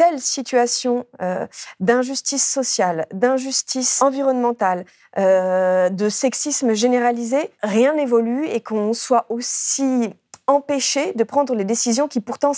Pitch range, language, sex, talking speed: 195-240 Hz, French, female, 115 wpm